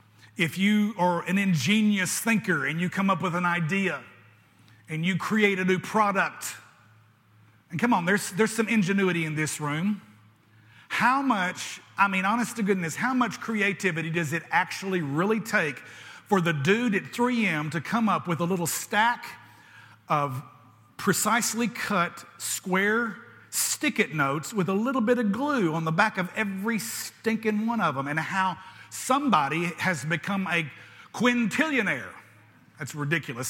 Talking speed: 155 wpm